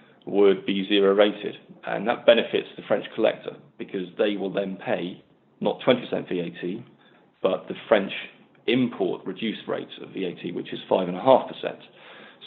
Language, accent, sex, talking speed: English, British, male, 140 wpm